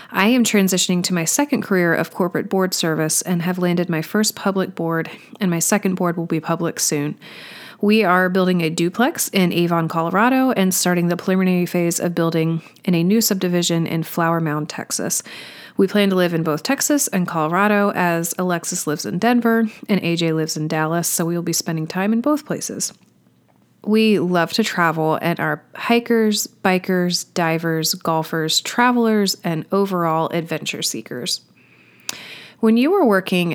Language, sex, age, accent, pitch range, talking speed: English, female, 30-49, American, 165-205 Hz, 170 wpm